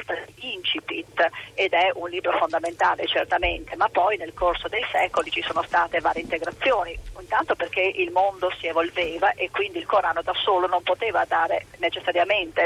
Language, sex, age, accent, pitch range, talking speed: Italian, female, 40-59, native, 175-215 Hz, 160 wpm